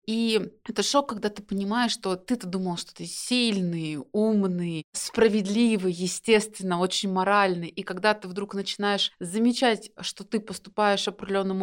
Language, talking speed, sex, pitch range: Russian, 140 wpm, female, 190-225 Hz